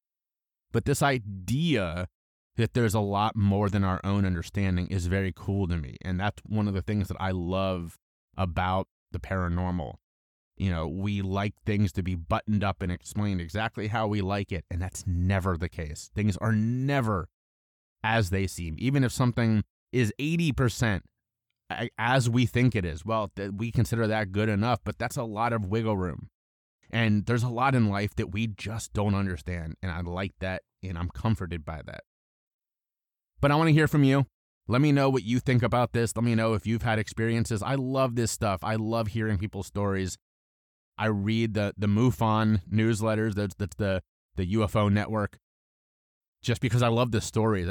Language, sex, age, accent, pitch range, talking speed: English, male, 30-49, American, 95-115 Hz, 185 wpm